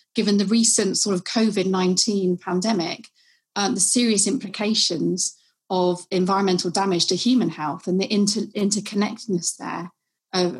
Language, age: English, 30-49